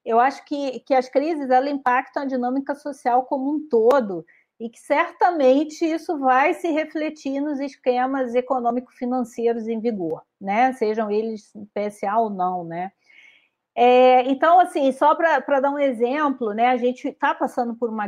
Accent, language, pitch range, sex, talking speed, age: Brazilian, Portuguese, 230-305 Hz, female, 160 wpm, 40-59